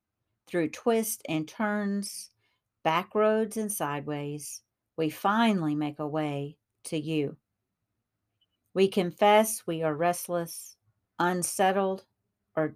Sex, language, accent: female, English, American